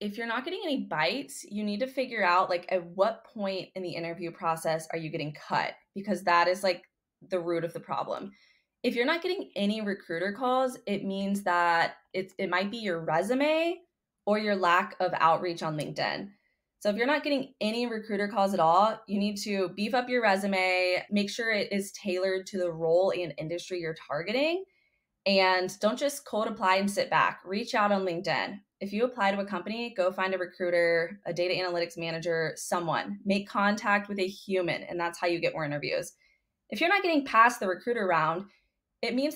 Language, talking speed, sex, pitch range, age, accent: English, 200 wpm, female, 180-215 Hz, 20-39, American